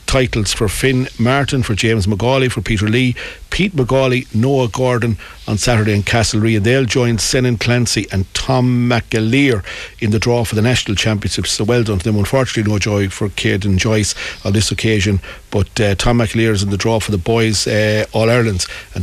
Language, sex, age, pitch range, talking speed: English, male, 60-79, 105-120 Hz, 190 wpm